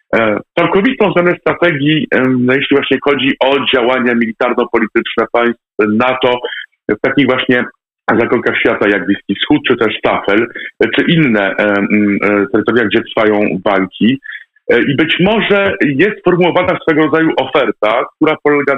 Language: Polish